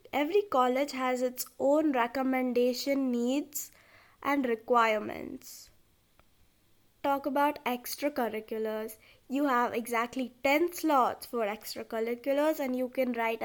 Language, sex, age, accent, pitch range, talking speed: English, female, 20-39, Indian, 235-285 Hz, 105 wpm